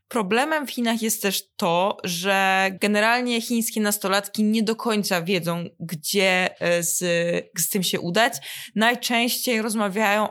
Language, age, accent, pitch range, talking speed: Polish, 20-39, native, 190-230 Hz, 130 wpm